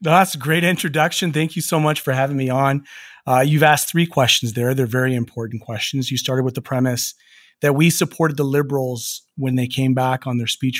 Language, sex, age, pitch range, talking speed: English, male, 30-49, 120-145 Hz, 215 wpm